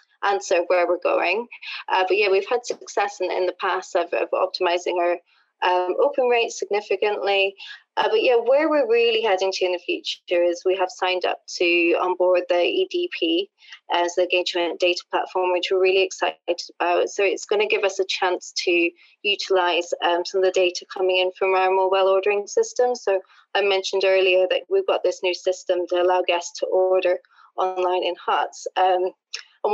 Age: 20-39